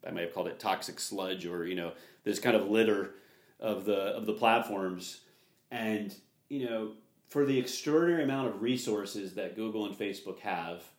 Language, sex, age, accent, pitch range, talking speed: English, male, 30-49, American, 95-120 Hz, 180 wpm